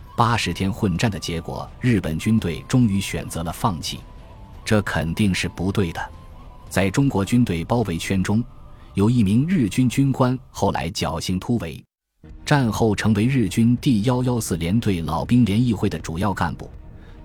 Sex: male